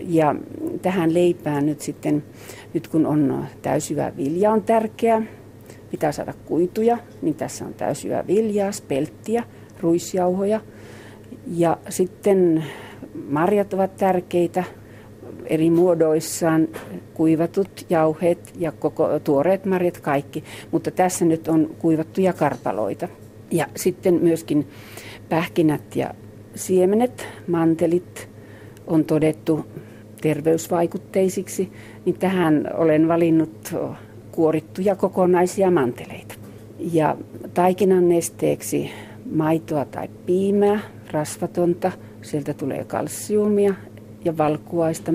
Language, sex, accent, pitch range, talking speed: Finnish, female, native, 145-180 Hz, 95 wpm